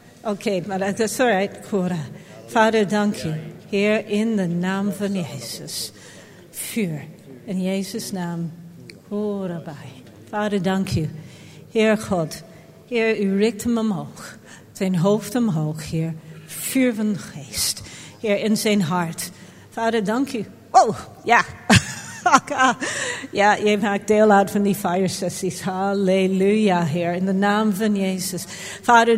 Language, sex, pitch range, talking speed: Dutch, female, 175-220 Hz, 135 wpm